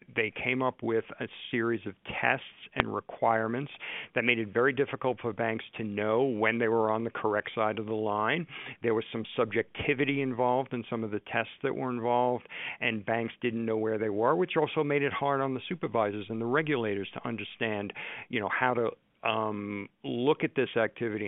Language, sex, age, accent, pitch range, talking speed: English, male, 50-69, American, 110-125 Hz, 200 wpm